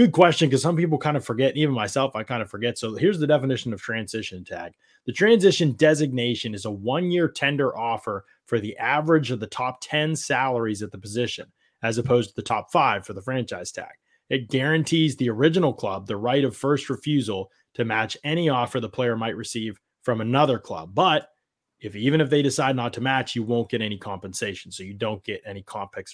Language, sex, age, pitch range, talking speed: English, male, 30-49, 105-135 Hz, 215 wpm